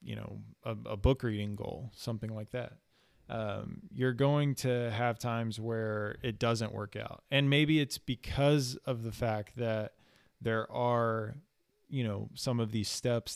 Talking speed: 165 wpm